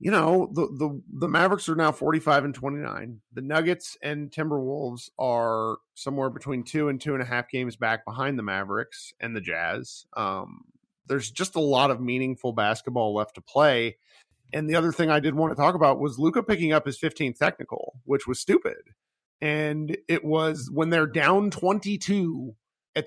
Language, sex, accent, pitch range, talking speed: English, male, American, 125-165 Hz, 185 wpm